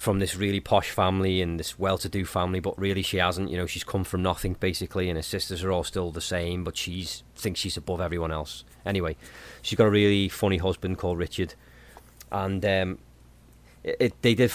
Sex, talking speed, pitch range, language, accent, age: male, 205 wpm, 85-105 Hz, English, British, 30-49